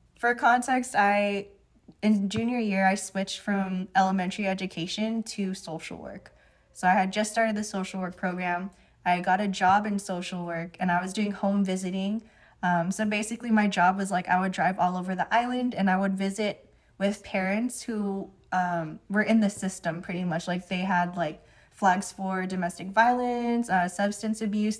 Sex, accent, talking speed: female, American, 180 wpm